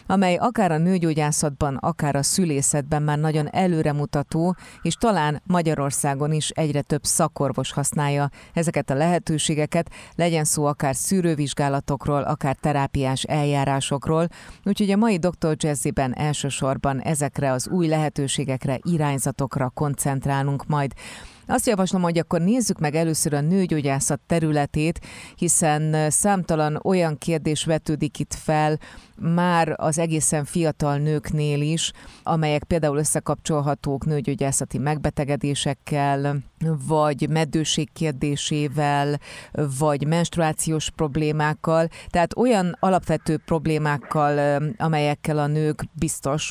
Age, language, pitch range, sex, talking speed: 30-49, Hungarian, 145-165 Hz, female, 105 wpm